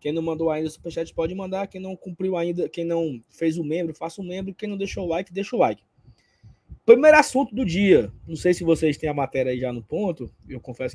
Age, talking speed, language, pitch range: 20-39, 240 wpm, Portuguese, 140-180 Hz